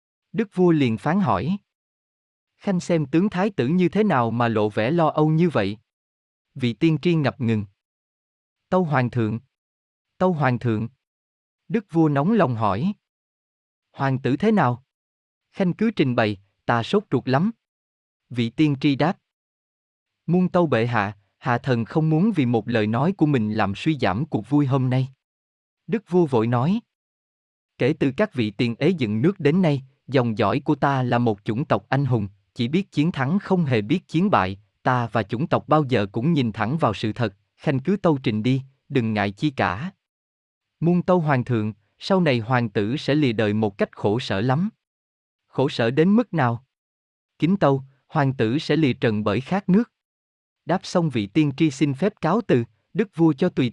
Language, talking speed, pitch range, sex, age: Vietnamese, 190 wpm, 110-165 Hz, male, 20-39